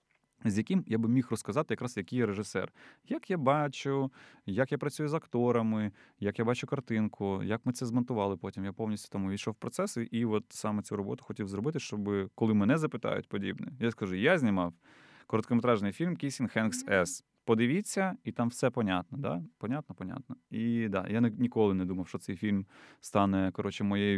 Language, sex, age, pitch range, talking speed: Ukrainian, male, 20-39, 100-120 Hz, 185 wpm